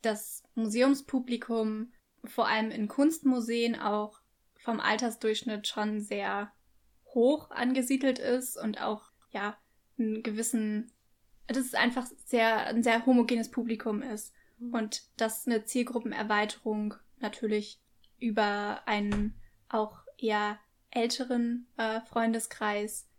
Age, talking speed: 10-29, 105 wpm